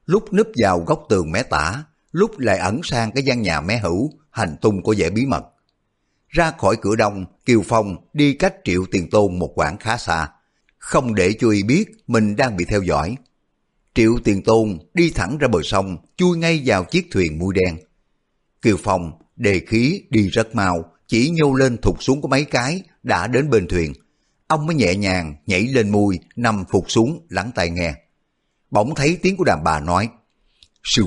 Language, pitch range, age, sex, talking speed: Vietnamese, 95-145 Hz, 50-69, male, 195 wpm